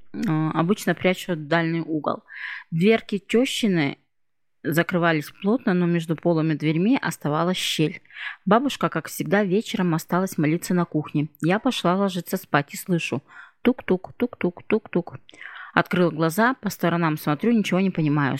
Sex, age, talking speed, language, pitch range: female, 20-39, 130 wpm, Russian, 160-205 Hz